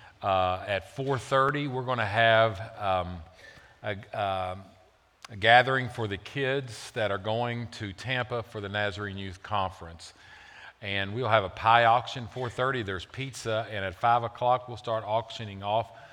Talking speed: 155 wpm